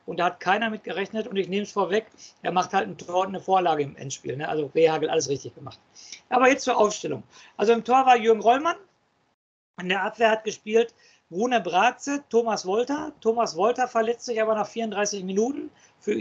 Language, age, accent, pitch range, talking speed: German, 50-69, German, 195-240 Hz, 200 wpm